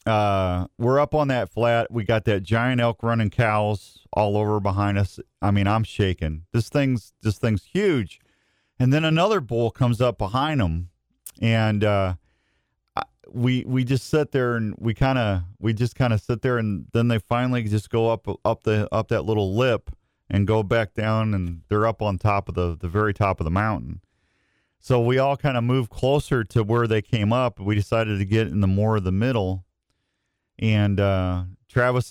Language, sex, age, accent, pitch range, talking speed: English, male, 40-59, American, 95-120 Hz, 200 wpm